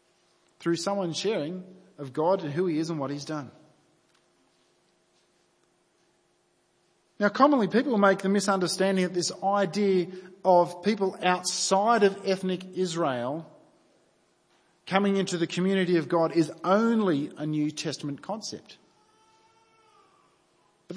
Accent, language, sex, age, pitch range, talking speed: Australian, English, male, 40-59, 170-210 Hz, 115 wpm